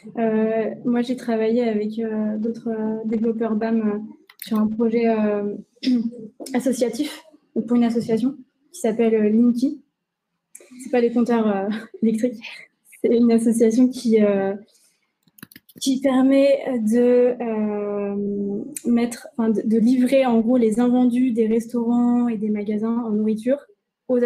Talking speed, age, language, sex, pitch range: 130 wpm, 20-39, French, female, 215-245 Hz